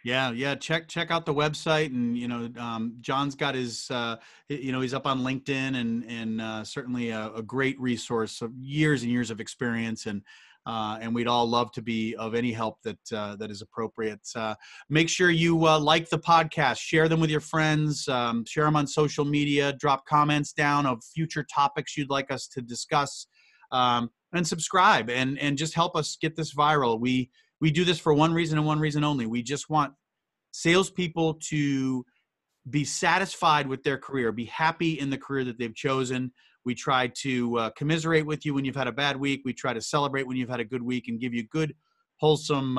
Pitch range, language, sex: 120-155 Hz, English, male